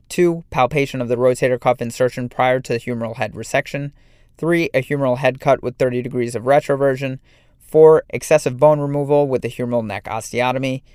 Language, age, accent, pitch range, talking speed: English, 30-49, American, 120-155 Hz, 175 wpm